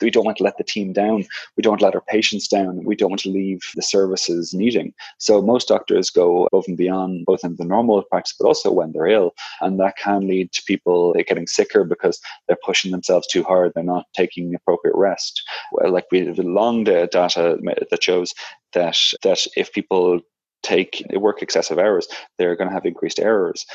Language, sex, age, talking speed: English, male, 20-39, 205 wpm